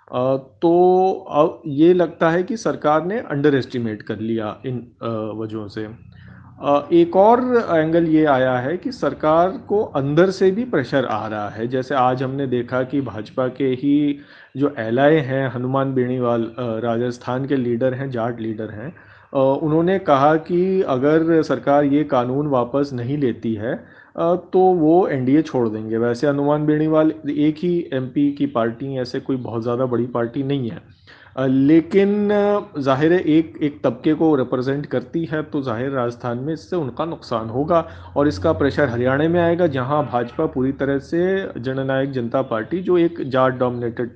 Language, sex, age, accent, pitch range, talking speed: Hindi, male, 30-49, native, 125-160 Hz, 165 wpm